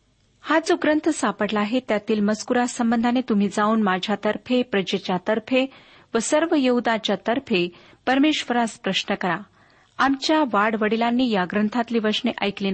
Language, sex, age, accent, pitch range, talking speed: Marathi, female, 40-59, native, 200-260 Hz, 125 wpm